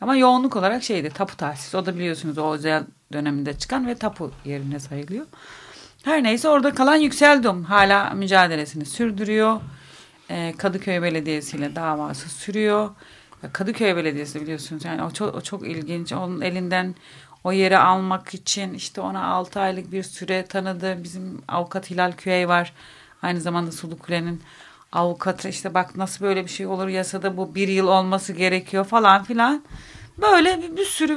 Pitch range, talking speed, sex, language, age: 170-220 Hz, 155 wpm, female, Turkish, 40-59